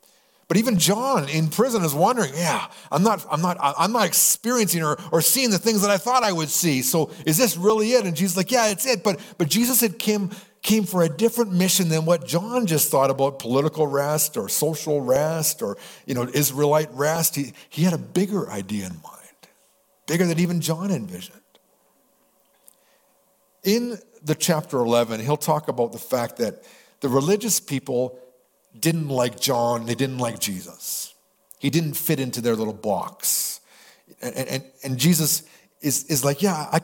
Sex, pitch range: male, 135-185 Hz